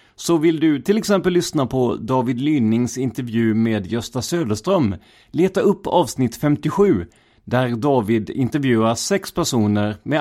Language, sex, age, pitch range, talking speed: Swedish, male, 30-49, 105-145 Hz, 135 wpm